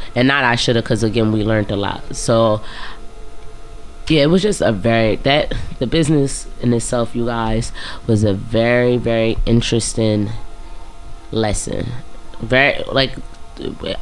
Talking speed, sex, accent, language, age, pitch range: 140 wpm, female, American, English, 20-39, 105-120 Hz